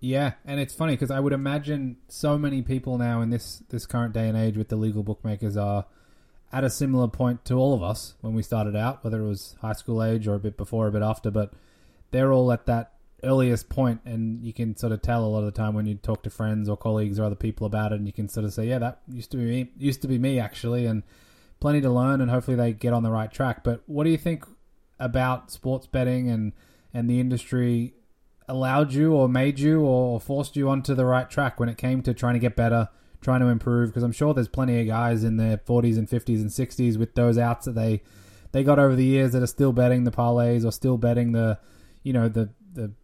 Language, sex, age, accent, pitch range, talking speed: English, male, 20-39, Australian, 110-130 Hz, 255 wpm